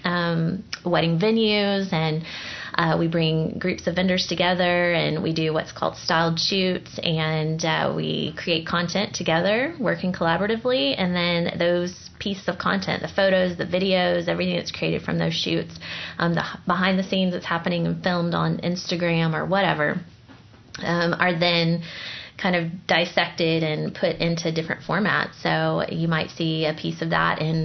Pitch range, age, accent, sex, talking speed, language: 160-180 Hz, 20-39, American, female, 165 wpm, English